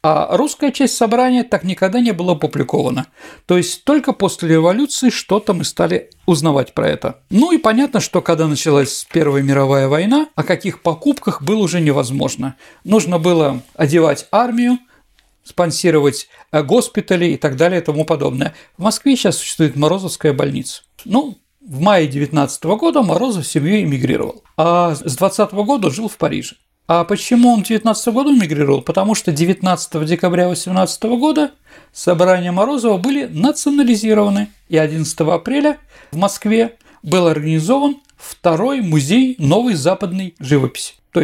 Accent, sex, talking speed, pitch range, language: native, male, 145 wpm, 160-235 Hz, Russian